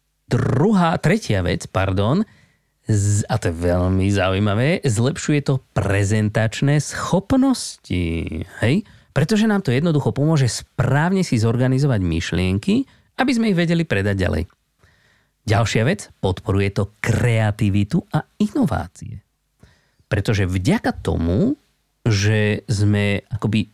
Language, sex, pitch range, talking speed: Slovak, male, 100-145 Hz, 110 wpm